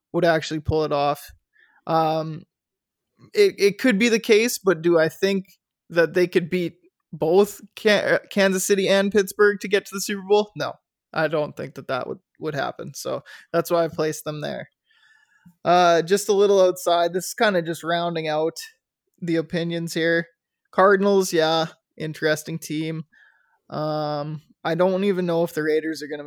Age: 20-39